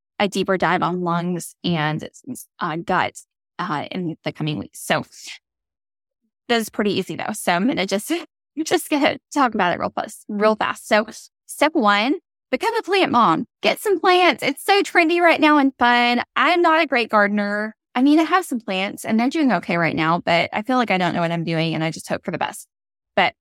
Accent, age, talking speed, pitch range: American, 10-29, 210 wpm, 185-265 Hz